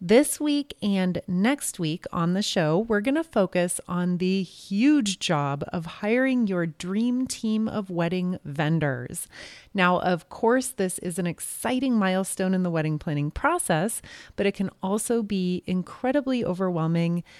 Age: 30-49